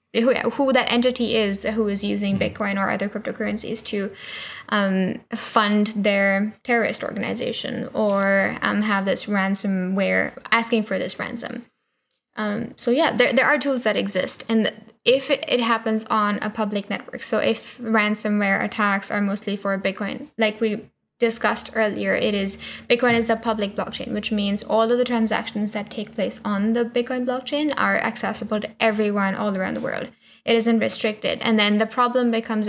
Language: English